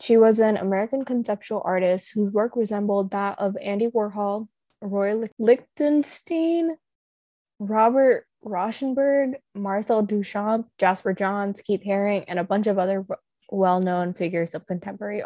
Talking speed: 125 wpm